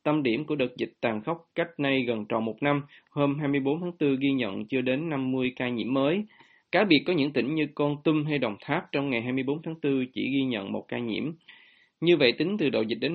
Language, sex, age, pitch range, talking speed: Vietnamese, male, 20-39, 120-150 Hz, 245 wpm